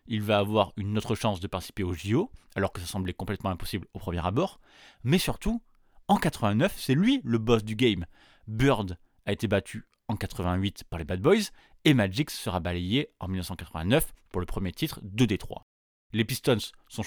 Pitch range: 95-120 Hz